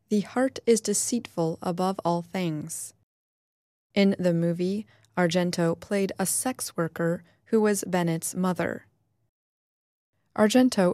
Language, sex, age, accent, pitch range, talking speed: English, female, 30-49, American, 160-200 Hz, 110 wpm